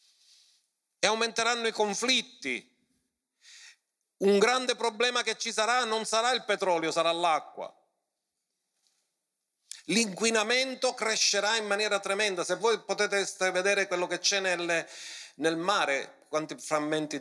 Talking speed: 110 wpm